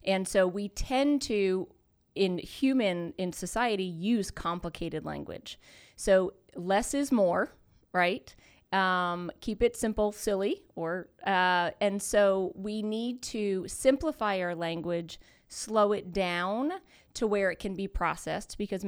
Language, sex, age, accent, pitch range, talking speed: English, female, 30-49, American, 175-210 Hz, 135 wpm